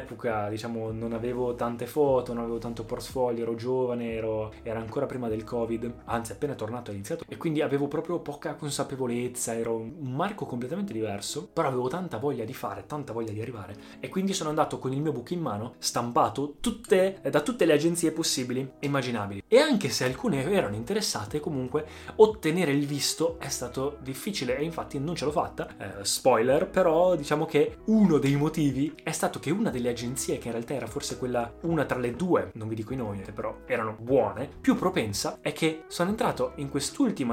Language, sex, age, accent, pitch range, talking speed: Italian, male, 20-39, native, 110-145 Hz, 200 wpm